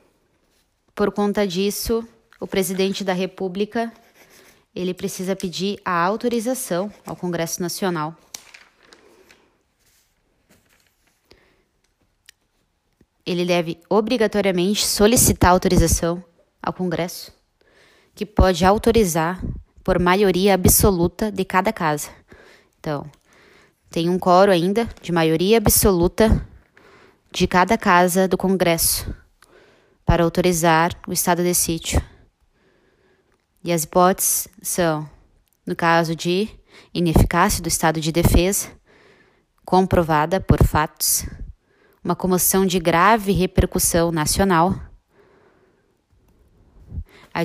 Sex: female